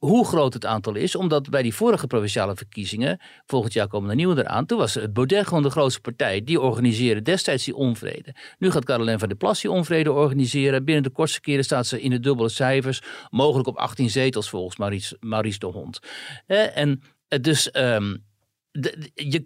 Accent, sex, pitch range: Dutch, male, 115-150 Hz